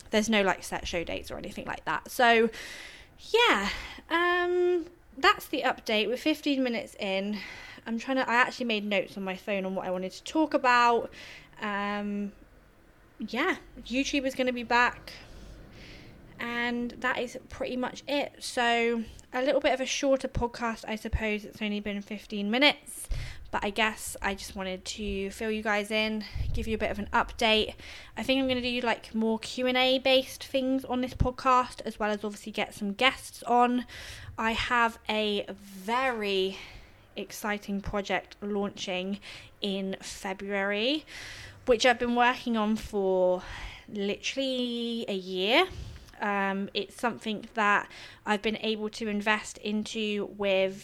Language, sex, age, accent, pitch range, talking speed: English, female, 20-39, British, 200-250 Hz, 160 wpm